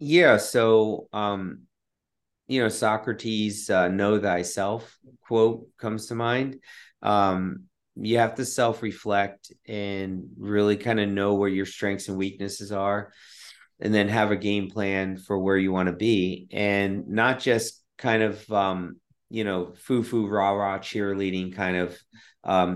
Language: English